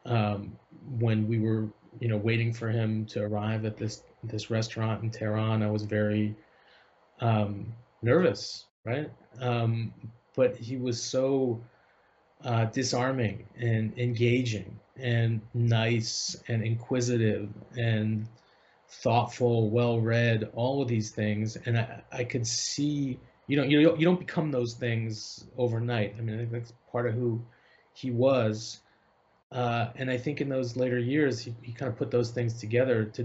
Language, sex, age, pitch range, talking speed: English, male, 30-49, 110-125 Hz, 150 wpm